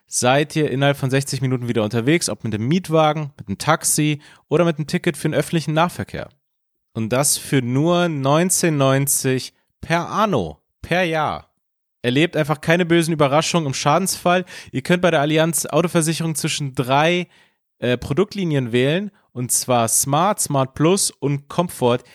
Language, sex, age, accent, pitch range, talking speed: German, male, 30-49, German, 135-170 Hz, 155 wpm